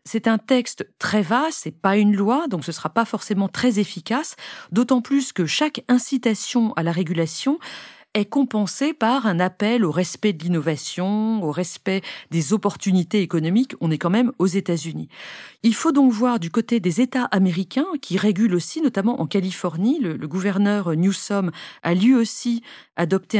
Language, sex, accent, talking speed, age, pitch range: French, female, French, 175 wpm, 40-59, 180-240 Hz